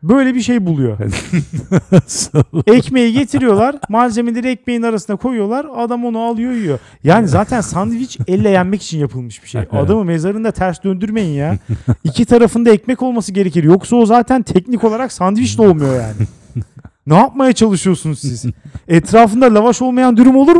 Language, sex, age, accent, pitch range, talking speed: Turkish, male, 40-59, native, 145-230 Hz, 150 wpm